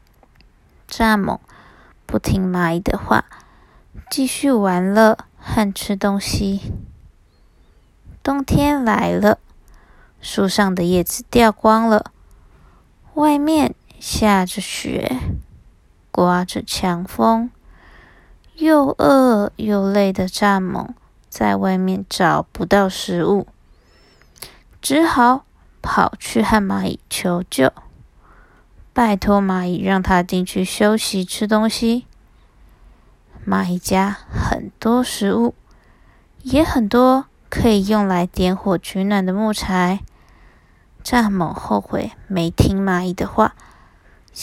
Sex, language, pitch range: female, Chinese, 185-225 Hz